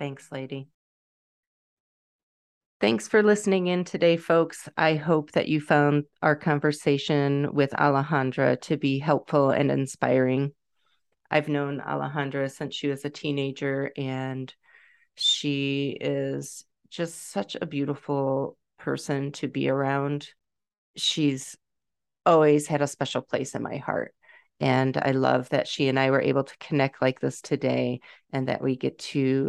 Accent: American